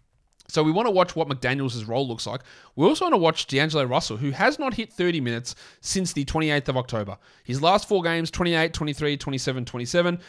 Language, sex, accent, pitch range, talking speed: English, male, Australian, 125-165 Hz, 210 wpm